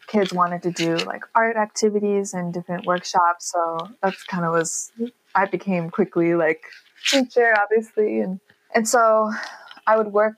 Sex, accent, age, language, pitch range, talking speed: female, American, 20-39, English, 175-210 Hz, 155 wpm